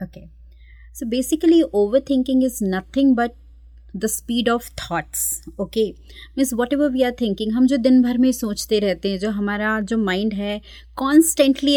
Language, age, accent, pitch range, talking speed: Hindi, 20-39, native, 195-275 Hz, 165 wpm